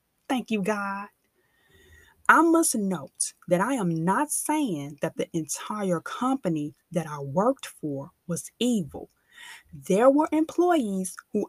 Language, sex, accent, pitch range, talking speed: English, female, American, 165-245 Hz, 130 wpm